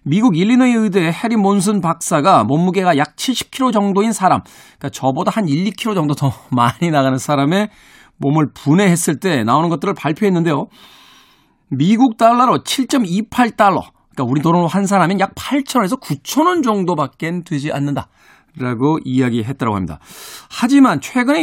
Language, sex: Korean, male